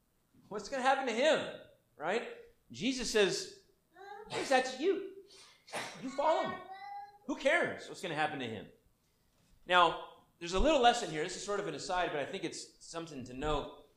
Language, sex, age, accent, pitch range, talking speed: English, male, 30-49, American, 165-255 Hz, 175 wpm